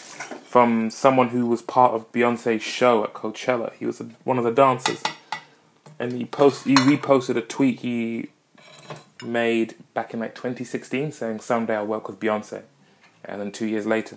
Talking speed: 175 wpm